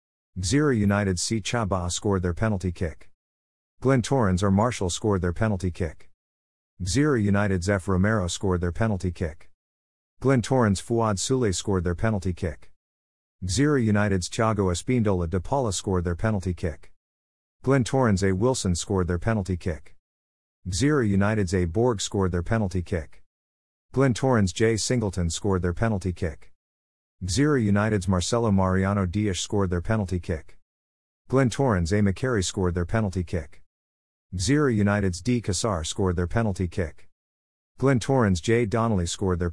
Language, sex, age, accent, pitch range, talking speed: English, male, 50-69, American, 85-110 Hz, 145 wpm